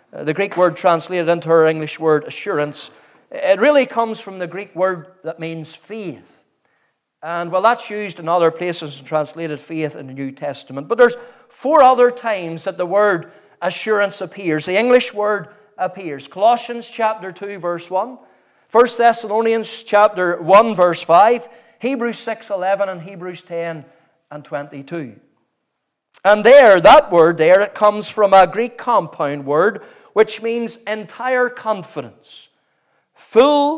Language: English